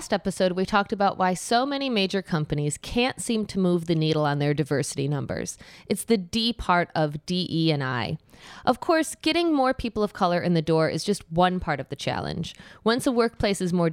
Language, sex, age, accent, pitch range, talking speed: English, female, 20-39, American, 160-200 Hz, 215 wpm